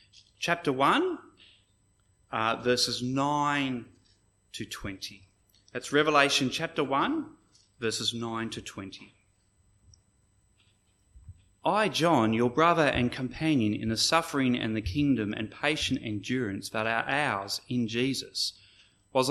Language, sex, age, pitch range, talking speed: English, male, 30-49, 100-145 Hz, 110 wpm